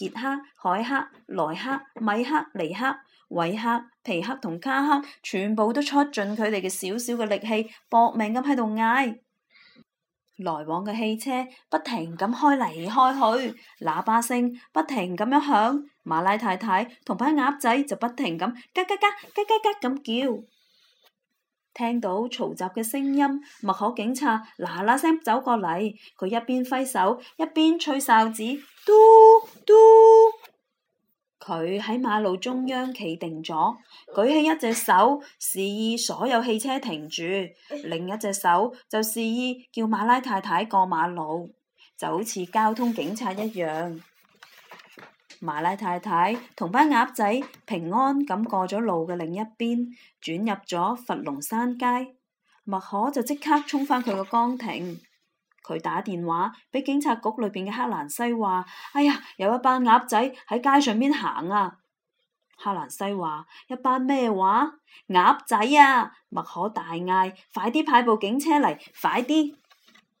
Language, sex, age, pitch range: Chinese, female, 20-39, 195-270 Hz